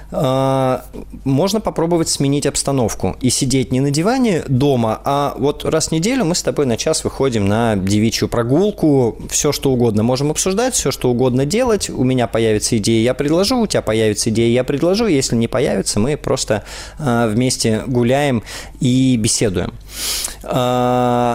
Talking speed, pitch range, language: 150 wpm, 100-130 Hz, Russian